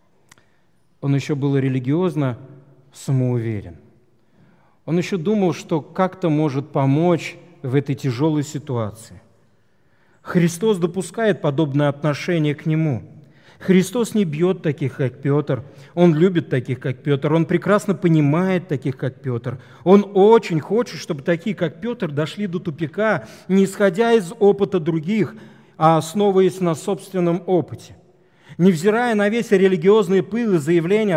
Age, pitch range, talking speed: 40-59, 145-190 Hz, 125 wpm